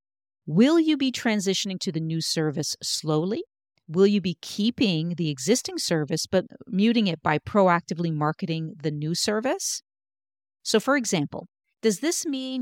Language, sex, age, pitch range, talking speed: English, female, 50-69, 160-230 Hz, 145 wpm